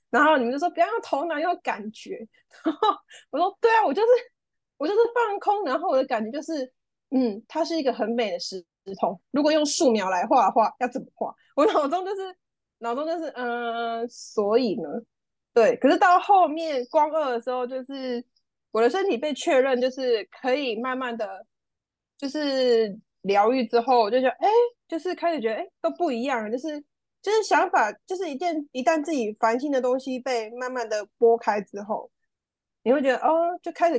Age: 20-39